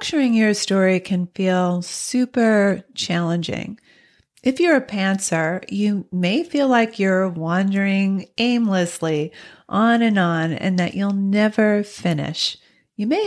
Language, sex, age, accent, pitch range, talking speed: English, female, 40-59, American, 180-245 Hz, 125 wpm